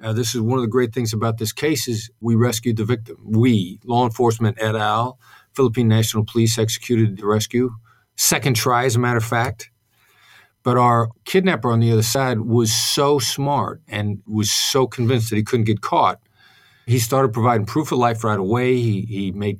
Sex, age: male, 50-69